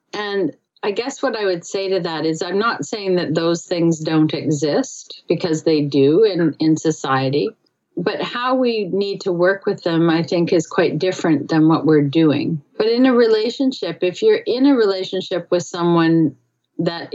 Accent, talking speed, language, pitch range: American, 185 wpm, English, 160-195 Hz